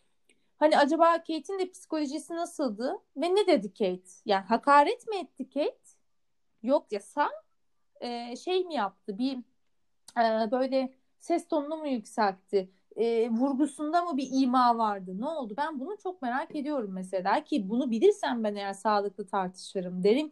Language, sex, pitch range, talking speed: Turkish, female, 210-310 Hz, 150 wpm